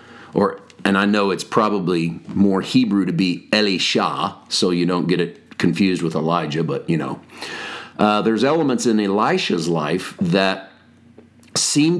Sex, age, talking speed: male, 40-59, 145 wpm